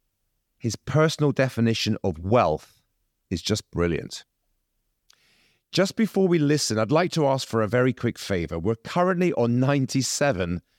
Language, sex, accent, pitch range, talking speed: English, male, British, 90-125 Hz, 140 wpm